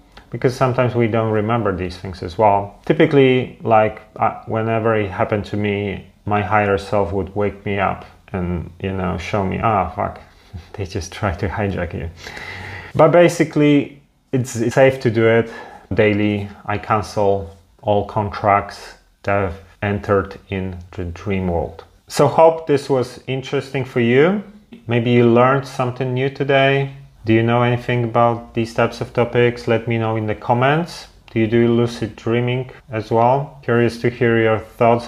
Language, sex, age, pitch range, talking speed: English, male, 30-49, 105-125 Hz, 170 wpm